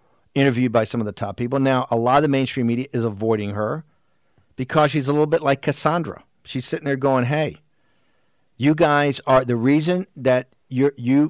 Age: 50-69